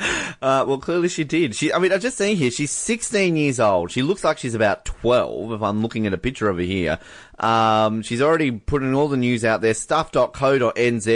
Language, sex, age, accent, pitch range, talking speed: English, male, 30-49, Australian, 105-165 Hz, 215 wpm